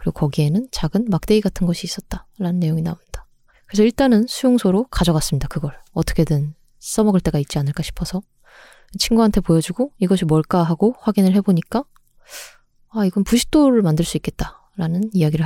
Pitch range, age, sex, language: 160-210 Hz, 20-39, female, Korean